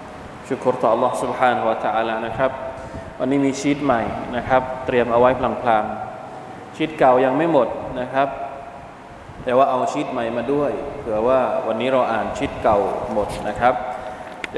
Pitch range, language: 115-140 Hz, Thai